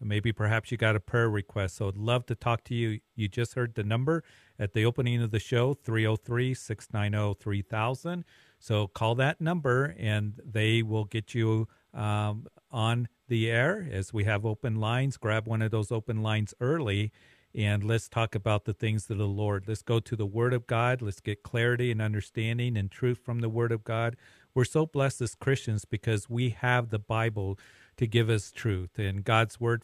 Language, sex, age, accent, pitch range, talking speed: English, male, 50-69, American, 105-120 Hz, 195 wpm